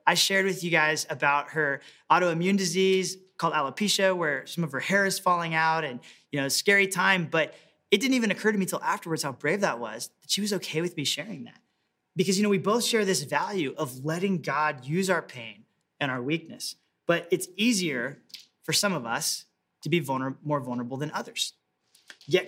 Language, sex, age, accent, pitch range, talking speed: English, male, 30-49, American, 160-195 Hz, 205 wpm